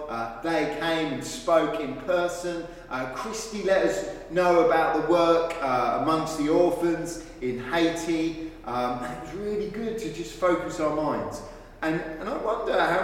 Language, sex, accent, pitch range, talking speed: English, male, British, 125-175 Hz, 160 wpm